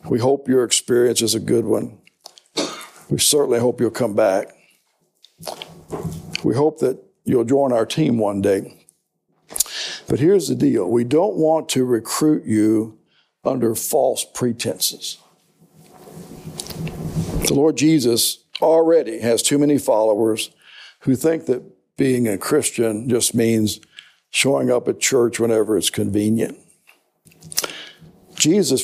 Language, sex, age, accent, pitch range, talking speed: English, male, 60-79, American, 115-140 Hz, 125 wpm